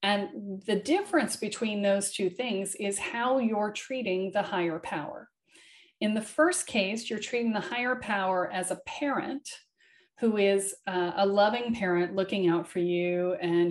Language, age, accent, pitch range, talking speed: English, 40-59, American, 175-230 Hz, 160 wpm